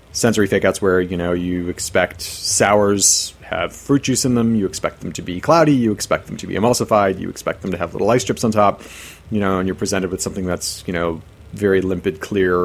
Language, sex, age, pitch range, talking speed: English, male, 30-49, 95-125 Hz, 230 wpm